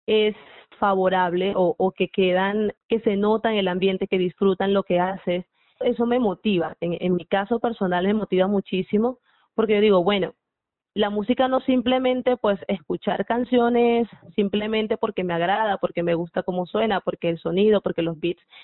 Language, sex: Spanish, female